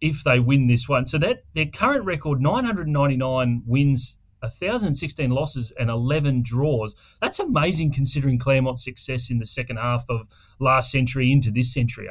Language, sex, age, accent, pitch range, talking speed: English, male, 30-49, Australian, 115-140 Hz, 160 wpm